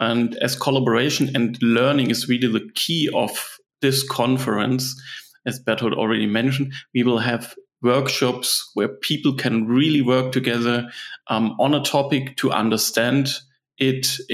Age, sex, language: 30-49, male, English